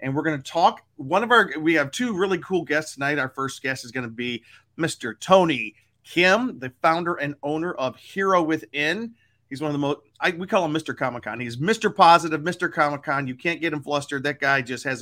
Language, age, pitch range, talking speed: English, 40-59, 130-165 Hz, 230 wpm